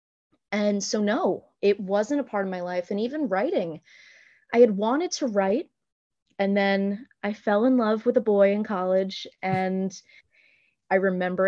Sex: female